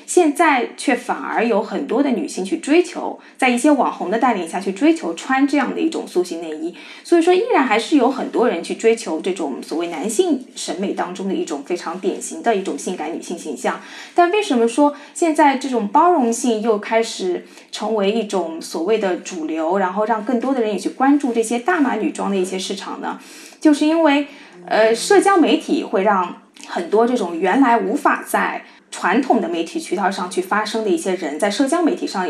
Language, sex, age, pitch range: Chinese, female, 20-39, 230-330 Hz